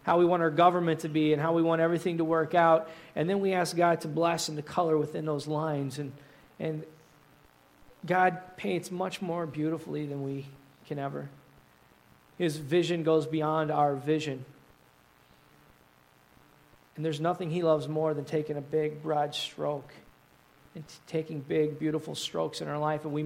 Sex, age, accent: male, 40-59, American